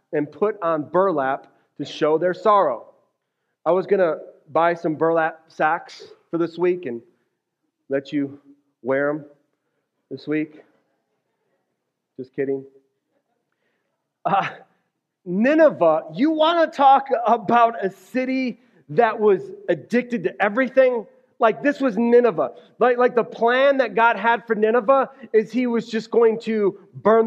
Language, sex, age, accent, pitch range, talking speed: English, male, 30-49, American, 180-260 Hz, 135 wpm